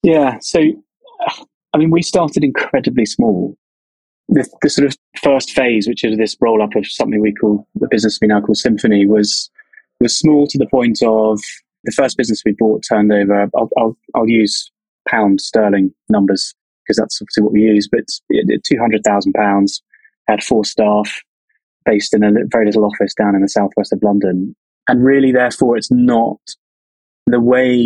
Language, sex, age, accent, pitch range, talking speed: English, male, 20-39, British, 105-120 Hz, 180 wpm